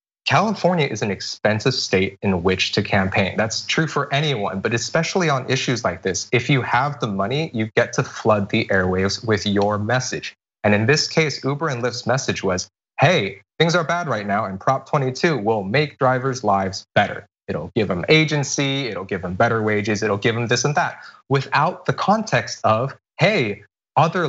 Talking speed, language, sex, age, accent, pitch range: 190 wpm, English, male, 20-39, American, 110-145 Hz